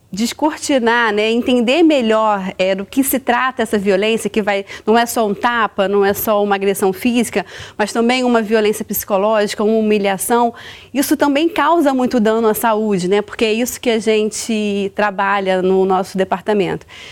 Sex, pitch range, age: female, 210-275 Hz, 30-49